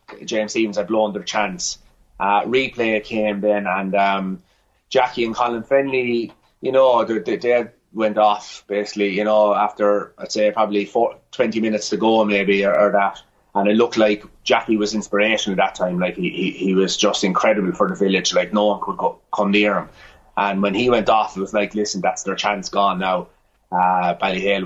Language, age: English, 30-49